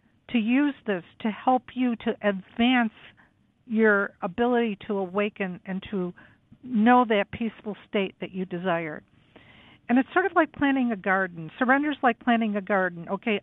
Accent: American